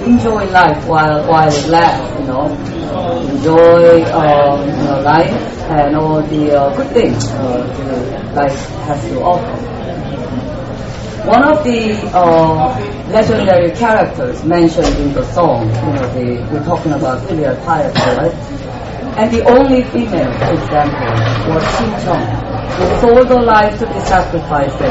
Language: English